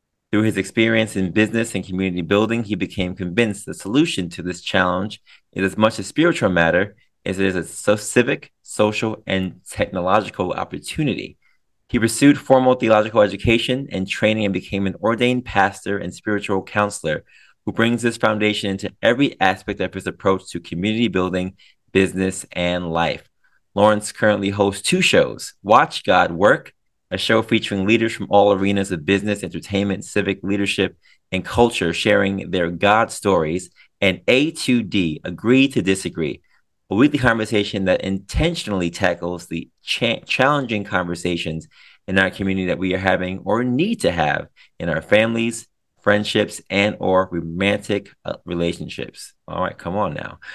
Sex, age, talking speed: male, 30-49, 150 wpm